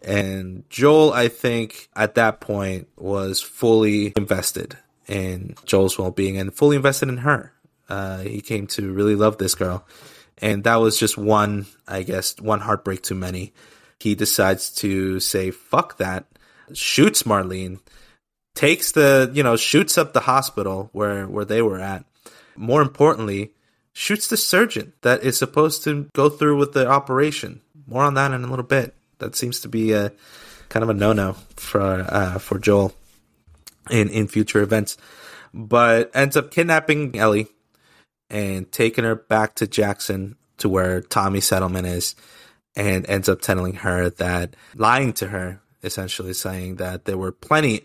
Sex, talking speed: male, 160 wpm